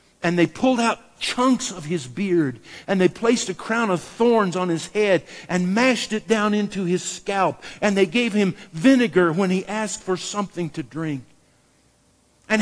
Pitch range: 150-210 Hz